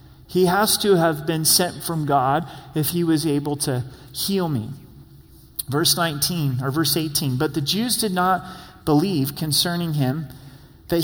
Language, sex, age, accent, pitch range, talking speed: English, male, 30-49, American, 135-175 Hz, 160 wpm